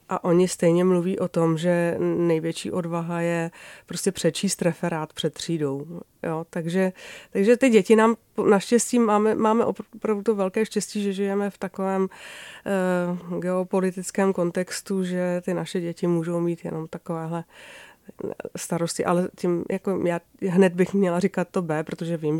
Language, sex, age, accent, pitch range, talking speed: Czech, female, 30-49, native, 175-220 Hz, 145 wpm